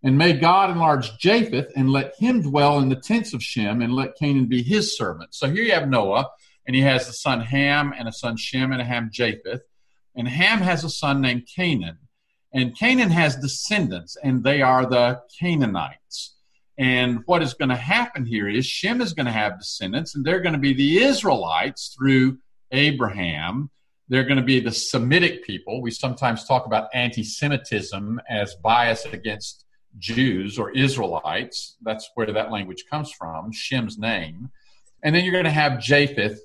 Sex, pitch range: male, 115-145 Hz